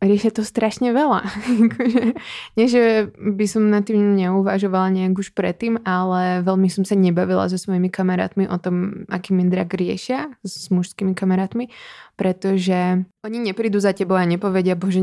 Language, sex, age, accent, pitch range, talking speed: Czech, female, 20-39, native, 185-205 Hz, 150 wpm